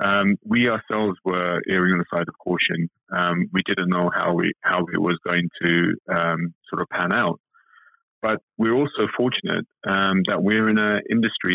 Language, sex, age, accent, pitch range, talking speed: English, male, 30-49, British, 90-110 Hz, 185 wpm